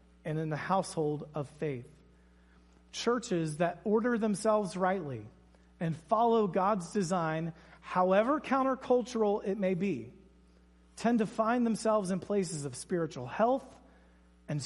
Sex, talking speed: male, 125 wpm